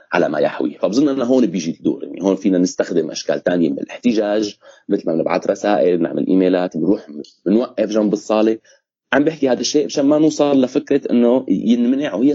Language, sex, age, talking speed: Arabic, male, 30-49, 185 wpm